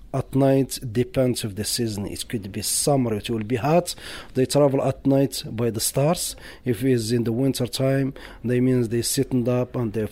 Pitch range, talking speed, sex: 125-145 Hz, 200 wpm, male